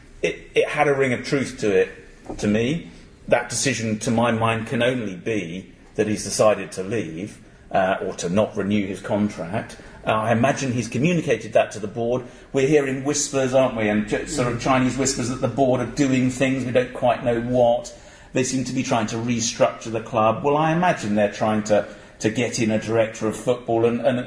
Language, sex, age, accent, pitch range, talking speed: English, male, 40-59, British, 105-130 Hz, 210 wpm